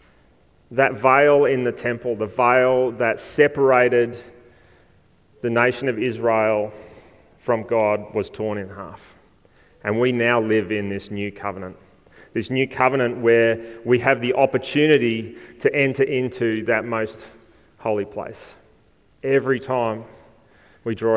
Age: 30-49